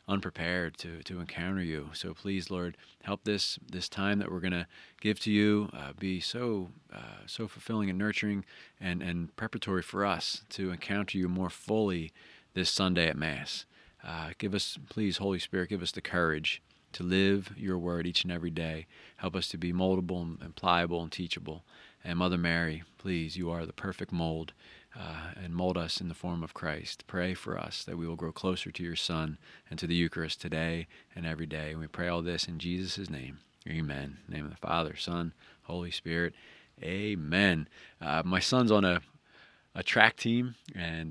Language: English